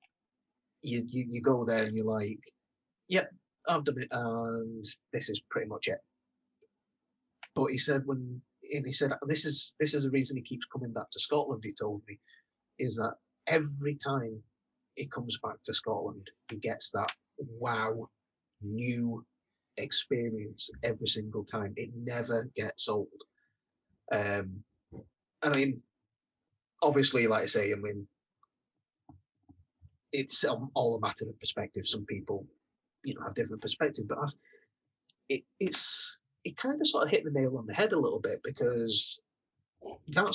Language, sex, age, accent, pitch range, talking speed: English, male, 30-49, British, 110-140 Hz, 160 wpm